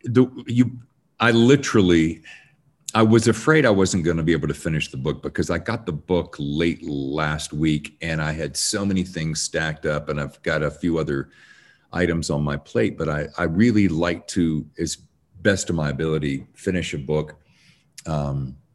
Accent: American